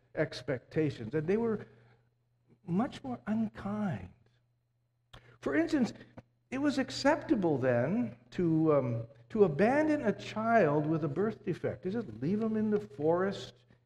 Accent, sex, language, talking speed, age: American, male, English, 130 wpm, 60-79